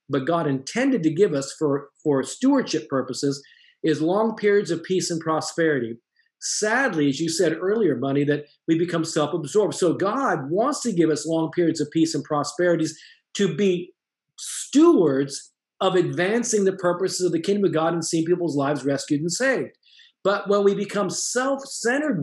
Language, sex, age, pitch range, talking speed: English, male, 50-69, 155-200 Hz, 170 wpm